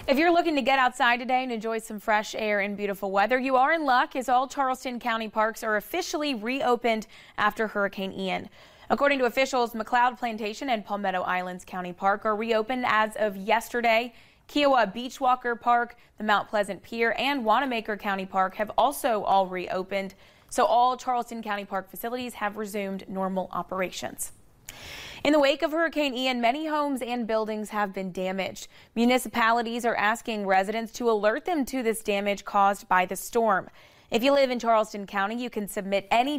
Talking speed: 180 wpm